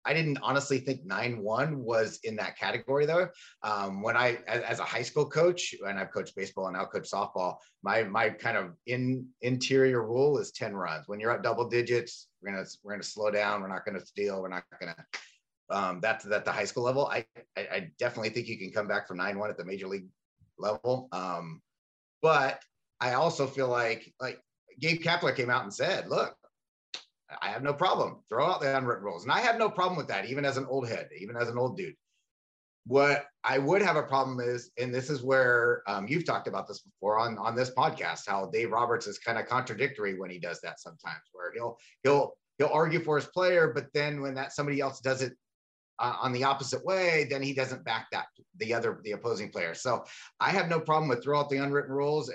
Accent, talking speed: American, 230 wpm